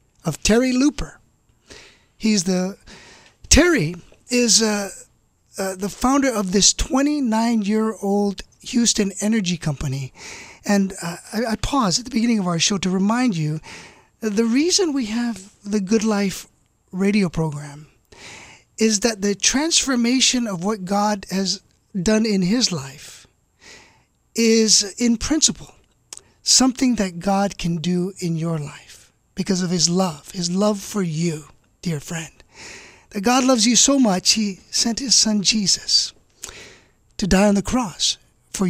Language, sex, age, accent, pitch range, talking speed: English, male, 40-59, American, 175-235 Hz, 140 wpm